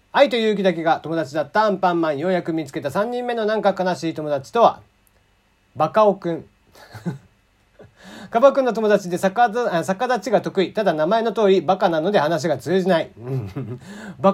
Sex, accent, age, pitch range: male, native, 40-59, 135-210 Hz